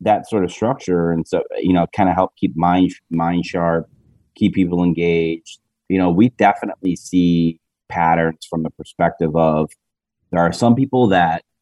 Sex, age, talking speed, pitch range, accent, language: male, 30-49, 170 wpm, 80-90 Hz, American, English